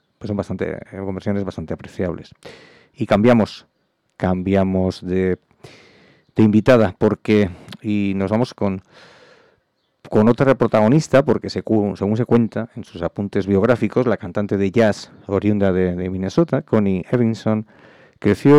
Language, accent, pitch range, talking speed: English, Spanish, 100-120 Hz, 130 wpm